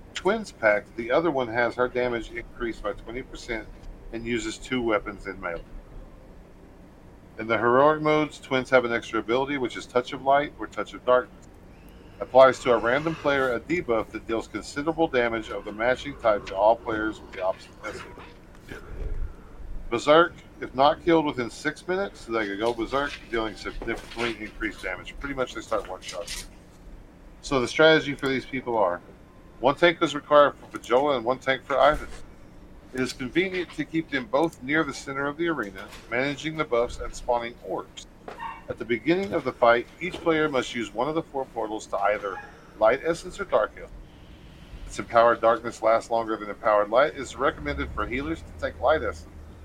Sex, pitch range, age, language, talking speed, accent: male, 110-145 Hz, 50-69, English, 185 wpm, American